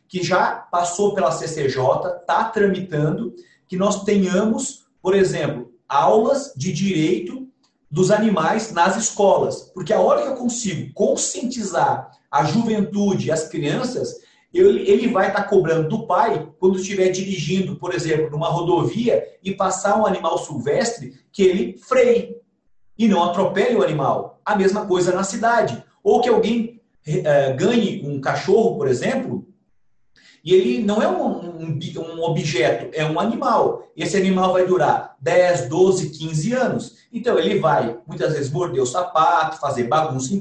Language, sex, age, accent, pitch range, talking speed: Portuguese, male, 40-59, Brazilian, 175-225 Hz, 150 wpm